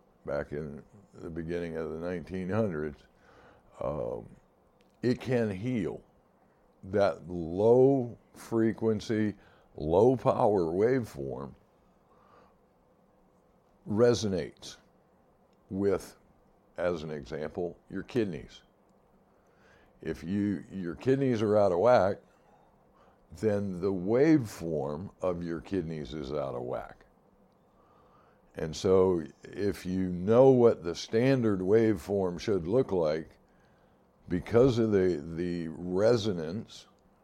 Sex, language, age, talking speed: male, English, 60-79, 90 wpm